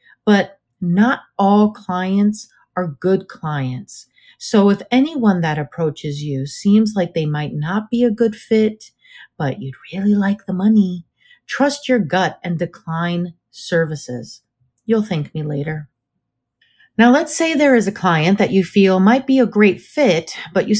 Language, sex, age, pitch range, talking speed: English, female, 40-59, 155-215 Hz, 160 wpm